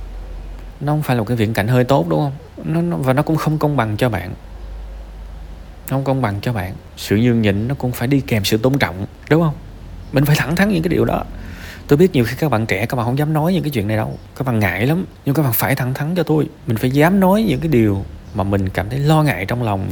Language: Vietnamese